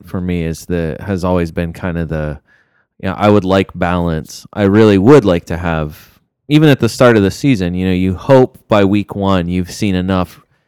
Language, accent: English, American